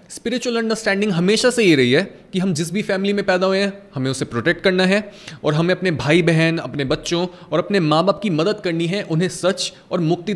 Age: 20-39